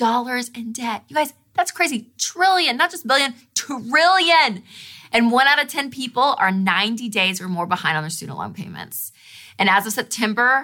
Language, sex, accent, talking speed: English, female, American, 185 wpm